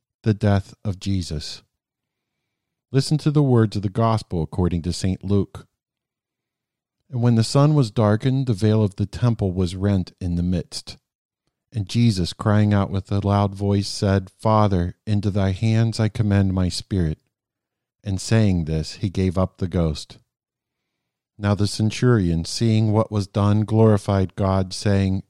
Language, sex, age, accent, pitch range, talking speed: English, male, 50-69, American, 95-110 Hz, 155 wpm